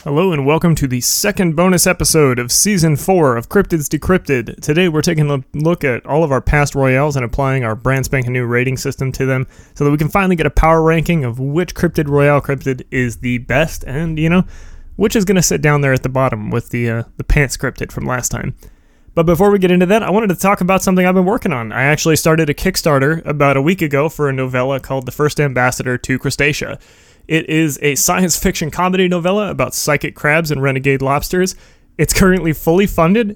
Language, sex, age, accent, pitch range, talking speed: English, male, 20-39, American, 130-165 Hz, 225 wpm